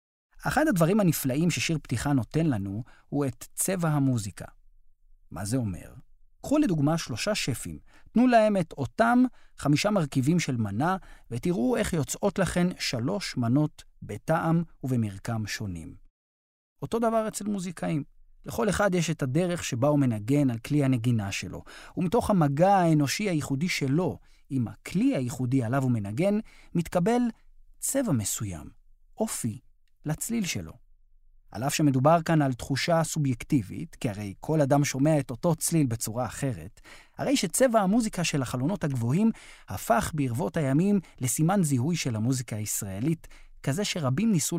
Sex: male